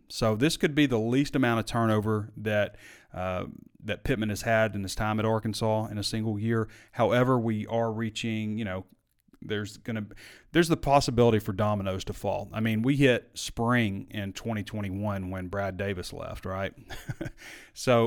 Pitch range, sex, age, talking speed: 105-120 Hz, male, 30-49, 175 wpm